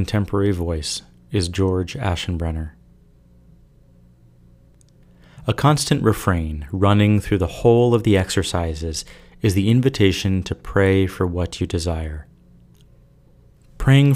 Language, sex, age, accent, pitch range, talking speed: English, male, 30-49, American, 90-115 Hz, 105 wpm